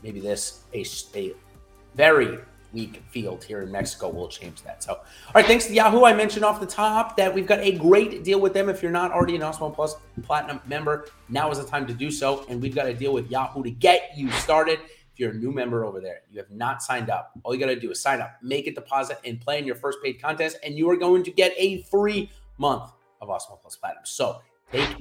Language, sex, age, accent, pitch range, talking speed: English, male, 30-49, American, 120-185 Hz, 250 wpm